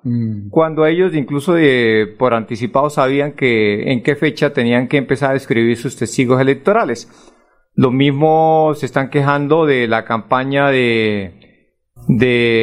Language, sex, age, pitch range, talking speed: Spanish, male, 40-59, 125-160 Hz, 140 wpm